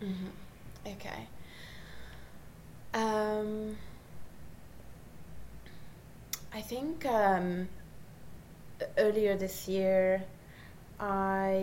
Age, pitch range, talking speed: 20-39, 185-195 Hz, 55 wpm